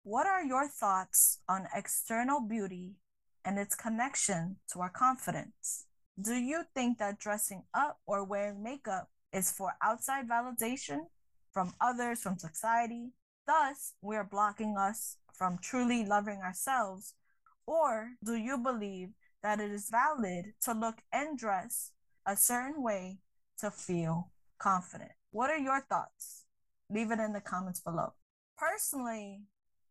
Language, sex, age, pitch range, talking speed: English, female, 20-39, 195-255 Hz, 135 wpm